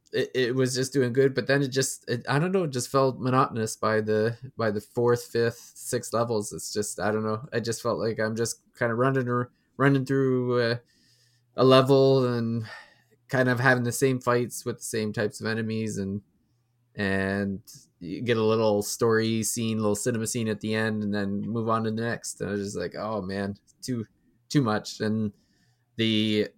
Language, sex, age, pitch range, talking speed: English, male, 20-39, 110-130 Hz, 205 wpm